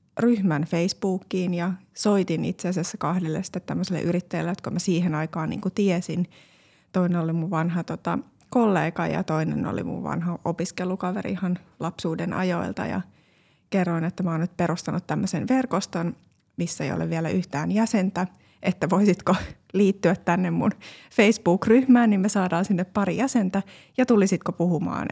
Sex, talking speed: female, 140 wpm